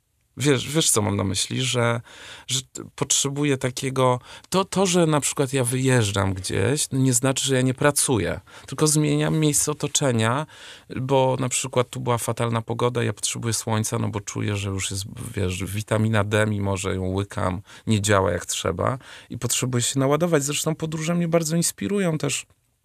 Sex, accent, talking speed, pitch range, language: male, native, 175 wpm, 105-135 Hz, Polish